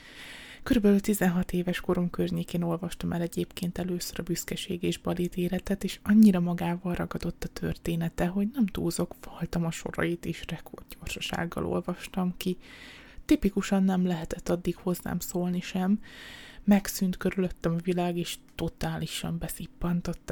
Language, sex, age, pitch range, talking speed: Hungarian, female, 20-39, 170-200 Hz, 130 wpm